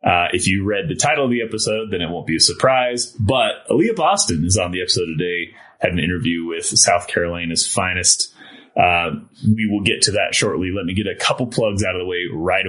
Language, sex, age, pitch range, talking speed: English, male, 30-49, 85-110 Hz, 225 wpm